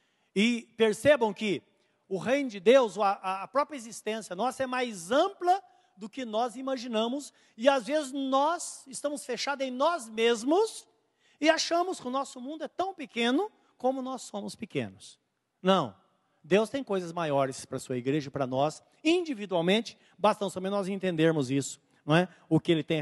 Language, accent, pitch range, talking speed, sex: Portuguese, Brazilian, 195-280 Hz, 165 wpm, male